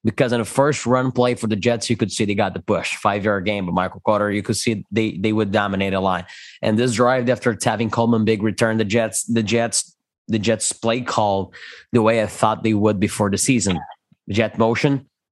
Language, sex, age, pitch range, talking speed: English, male, 20-39, 105-125 Hz, 225 wpm